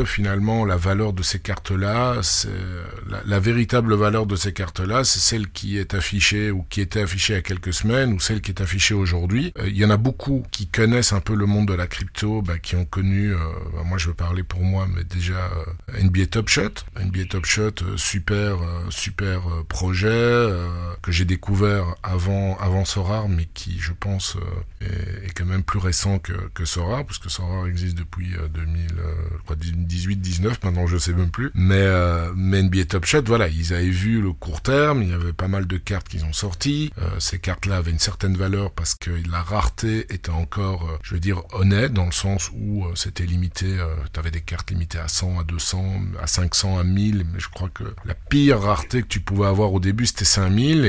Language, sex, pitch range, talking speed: French, male, 90-105 Hz, 220 wpm